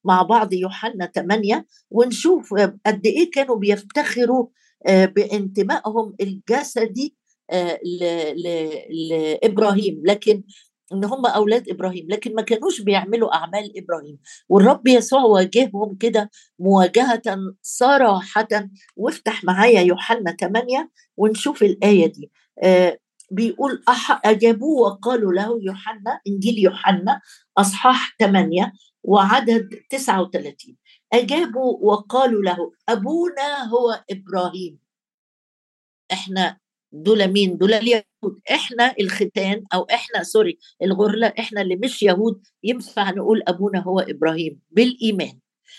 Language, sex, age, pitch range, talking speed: Arabic, female, 50-69, 190-235 Hz, 100 wpm